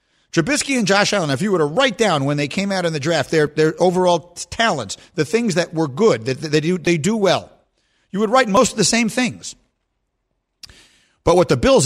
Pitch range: 140-215 Hz